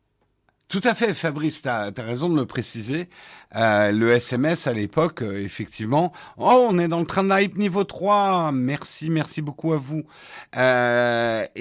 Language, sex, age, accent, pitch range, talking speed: French, male, 50-69, French, 125-175 Hz, 180 wpm